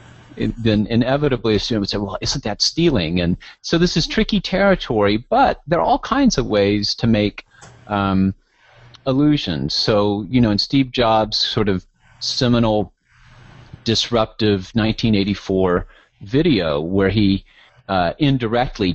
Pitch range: 100-130 Hz